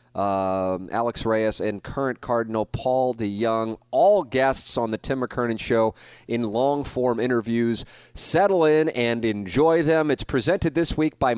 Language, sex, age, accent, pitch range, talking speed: English, male, 30-49, American, 100-130 Hz, 150 wpm